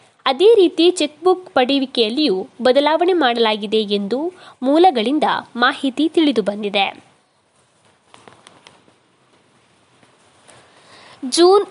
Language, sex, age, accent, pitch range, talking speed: Kannada, female, 20-39, native, 245-350 Hz, 55 wpm